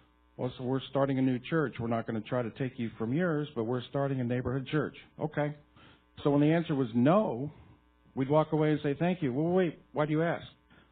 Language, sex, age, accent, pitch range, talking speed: English, male, 50-69, American, 115-145 Hz, 240 wpm